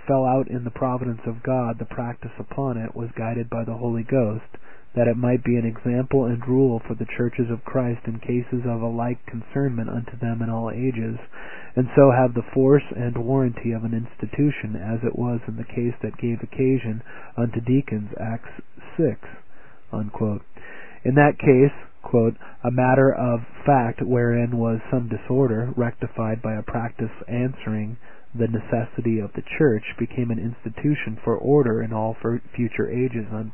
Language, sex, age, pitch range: English, male, 40-59, 115-130 Hz